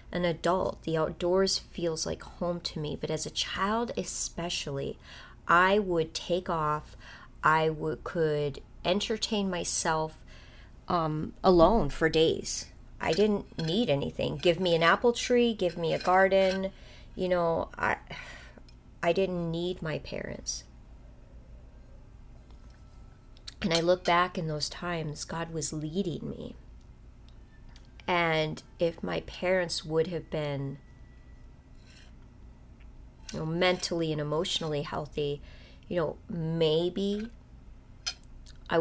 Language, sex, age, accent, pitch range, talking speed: English, female, 30-49, American, 150-185 Hz, 115 wpm